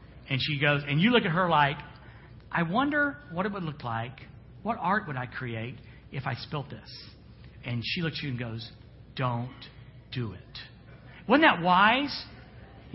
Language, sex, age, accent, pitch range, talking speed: English, male, 50-69, American, 165-260 Hz, 180 wpm